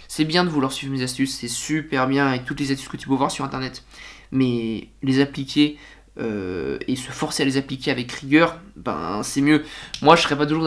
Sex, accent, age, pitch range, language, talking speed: male, French, 20-39, 135-155 Hz, French, 225 wpm